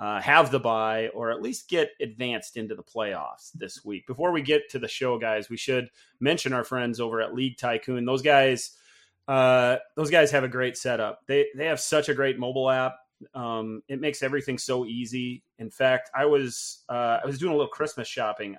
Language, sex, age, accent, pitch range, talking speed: English, male, 30-49, American, 120-140 Hz, 210 wpm